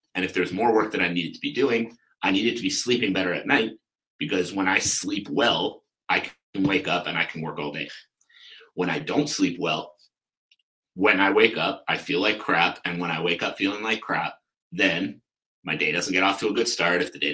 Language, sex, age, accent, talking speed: English, male, 30-49, American, 235 wpm